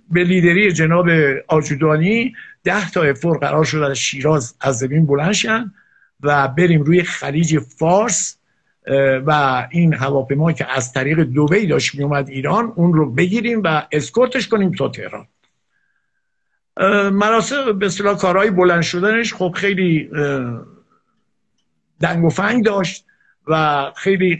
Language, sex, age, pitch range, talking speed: Persian, male, 50-69, 150-200 Hz, 130 wpm